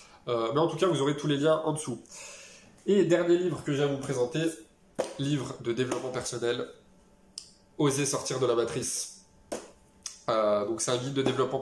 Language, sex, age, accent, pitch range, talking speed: French, male, 20-39, French, 115-145 Hz, 200 wpm